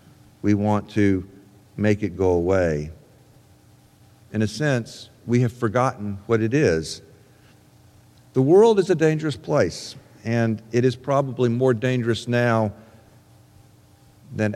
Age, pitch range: 50-69, 110-140 Hz